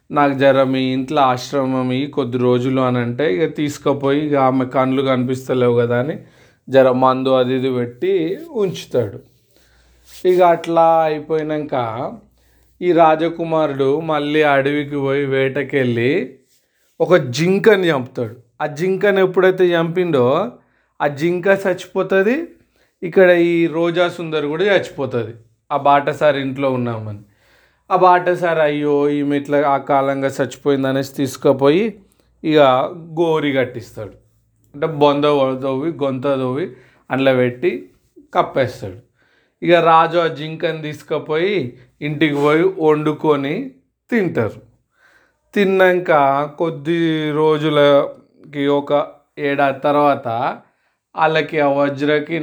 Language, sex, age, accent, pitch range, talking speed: Telugu, male, 30-49, native, 130-165 Hz, 100 wpm